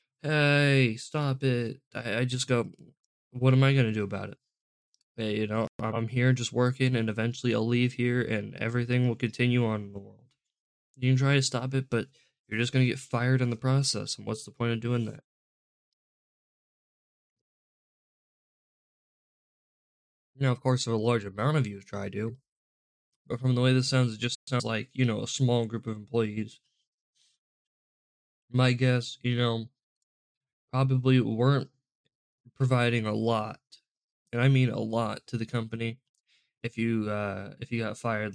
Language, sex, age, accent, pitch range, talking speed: English, male, 10-29, American, 115-130 Hz, 170 wpm